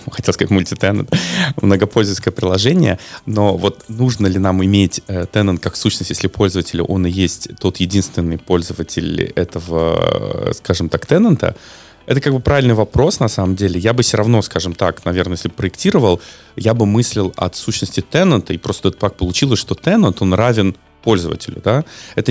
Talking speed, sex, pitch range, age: 165 wpm, male, 90-115 Hz, 20-39